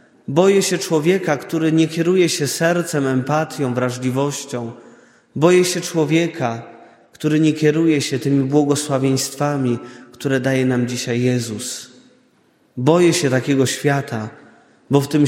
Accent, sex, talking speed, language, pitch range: native, male, 120 wpm, Polish, 125-155 Hz